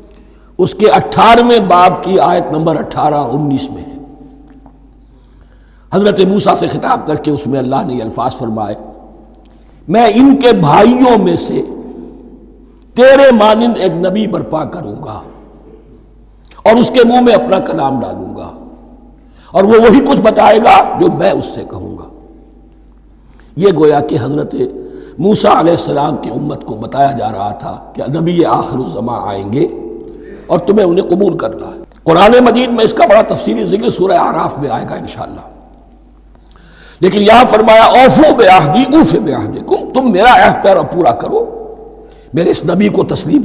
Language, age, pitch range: Urdu, 60-79, 180-265 Hz